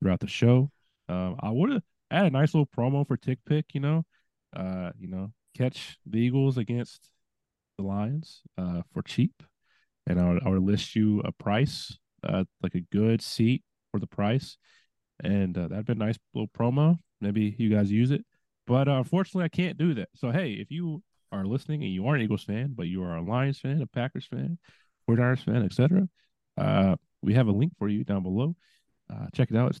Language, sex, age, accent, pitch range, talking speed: English, male, 30-49, American, 100-135 Hz, 205 wpm